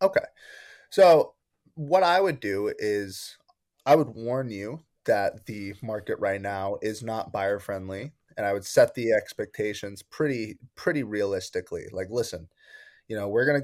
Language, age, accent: English, 20-39, American